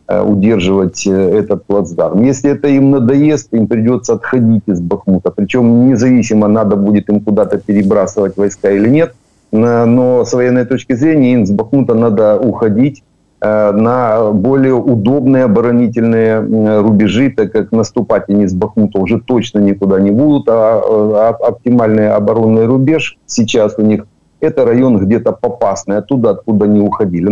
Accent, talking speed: native, 140 wpm